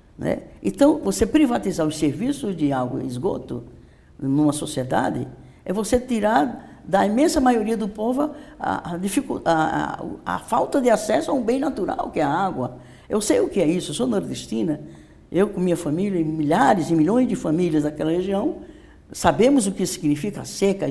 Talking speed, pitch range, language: 185 wpm, 160-260 Hz, Portuguese